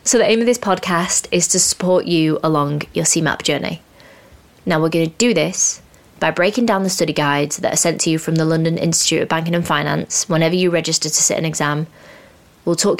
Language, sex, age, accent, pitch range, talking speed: English, female, 20-39, British, 155-180 Hz, 220 wpm